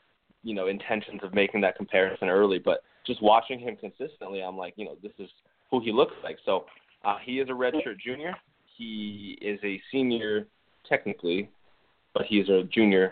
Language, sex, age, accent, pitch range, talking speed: English, male, 20-39, American, 100-120 Hz, 180 wpm